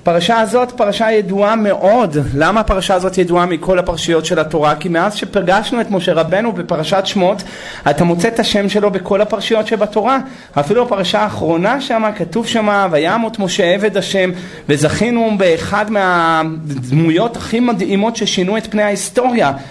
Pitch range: 175-225 Hz